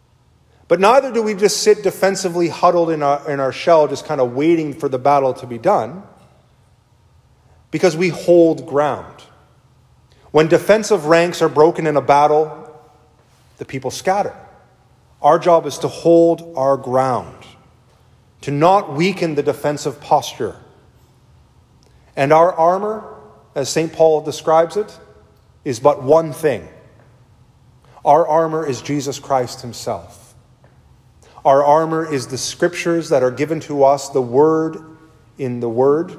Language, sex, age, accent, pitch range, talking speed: English, male, 30-49, American, 125-170 Hz, 140 wpm